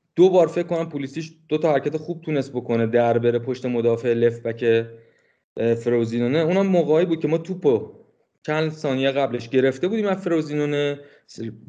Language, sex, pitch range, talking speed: Persian, male, 120-165 Hz, 160 wpm